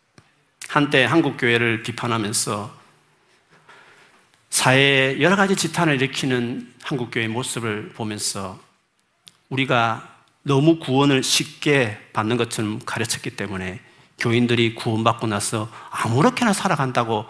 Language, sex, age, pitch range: Korean, male, 40-59, 115-175 Hz